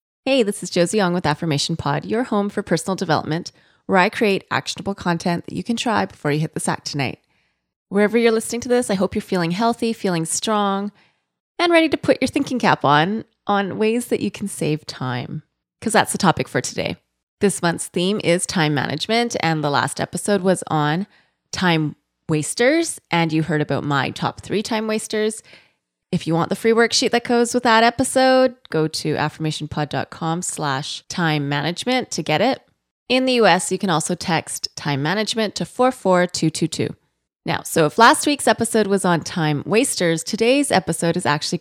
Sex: female